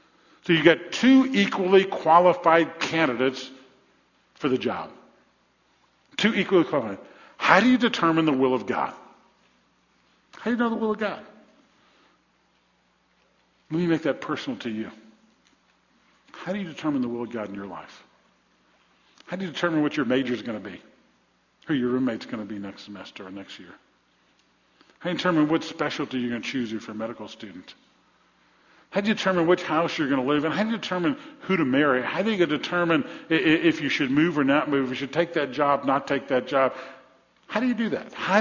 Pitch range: 130-180 Hz